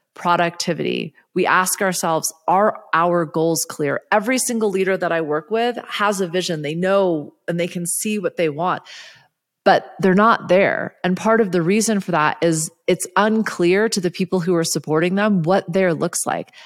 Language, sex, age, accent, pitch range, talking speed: English, female, 30-49, American, 165-205 Hz, 185 wpm